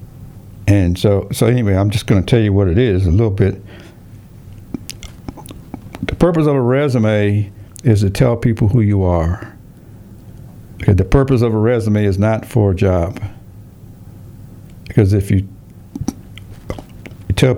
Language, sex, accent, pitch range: English, male, American, 100-120 Hz